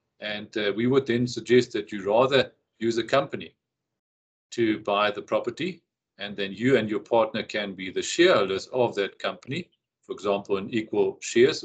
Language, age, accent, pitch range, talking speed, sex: English, 50-69, German, 105-165 Hz, 175 wpm, male